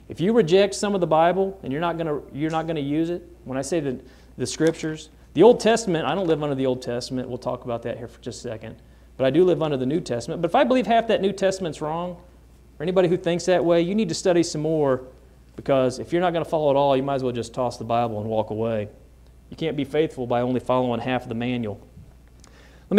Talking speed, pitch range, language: 260 wpm, 120-175 Hz, English